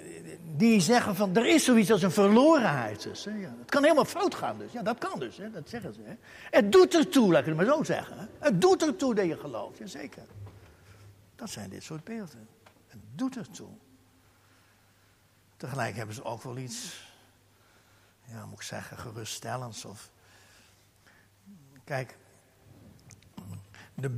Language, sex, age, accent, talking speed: Dutch, male, 60-79, Dutch, 170 wpm